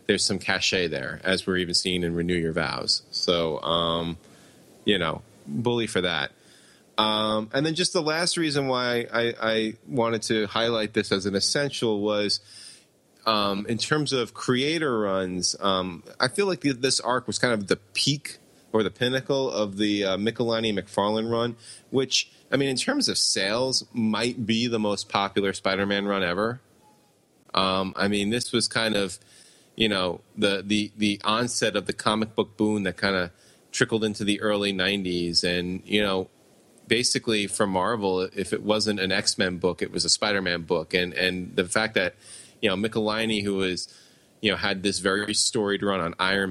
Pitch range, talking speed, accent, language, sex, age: 95-115 Hz, 180 wpm, American, English, male, 30-49